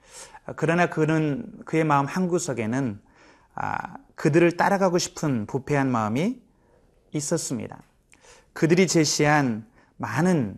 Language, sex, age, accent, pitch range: Korean, male, 30-49, native, 130-170 Hz